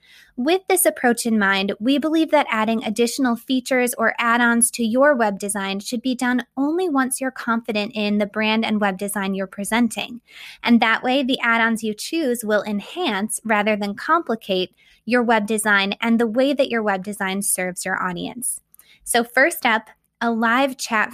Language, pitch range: English, 210-260 Hz